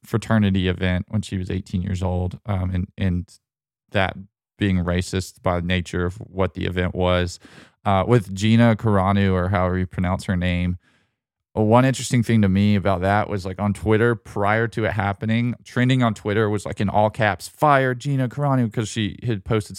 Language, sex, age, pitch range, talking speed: English, male, 20-39, 95-110 Hz, 190 wpm